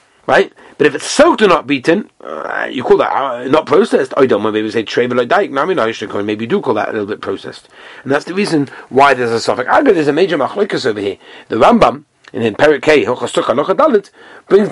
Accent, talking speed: British, 205 wpm